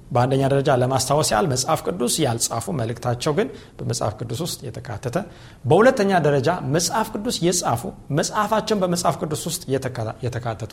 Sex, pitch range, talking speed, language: male, 130-185 Hz, 130 wpm, Amharic